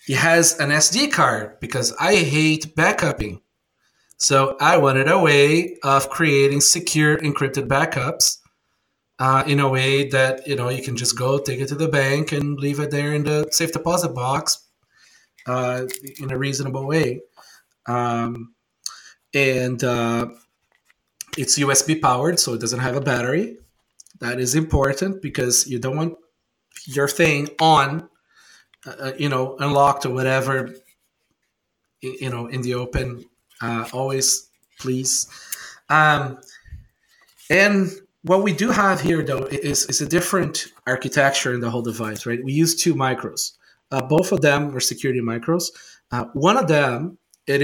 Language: English